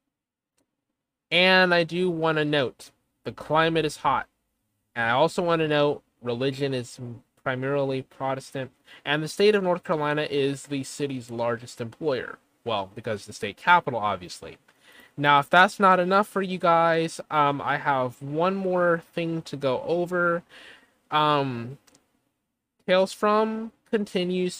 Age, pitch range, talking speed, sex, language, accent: 20-39, 135-165 Hz, 140 wpm, male, English, American